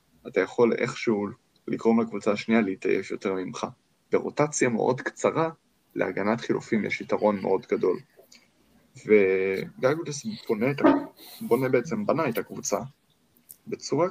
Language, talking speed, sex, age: Hebrew, 110 wpm, male, 20-39